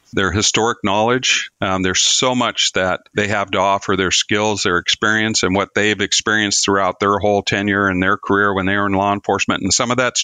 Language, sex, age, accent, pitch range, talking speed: English, male, 50-69, American, 95-105 Hz, 215 wpm